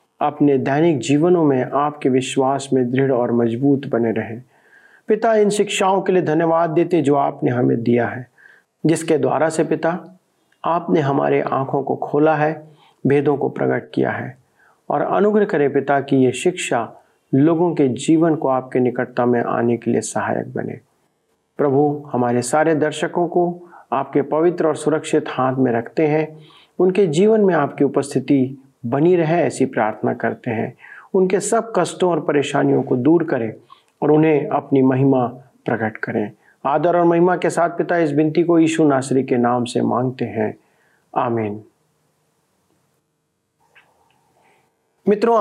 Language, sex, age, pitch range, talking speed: Hindi, male, 50-69, 130-170 Hz, 150 wpm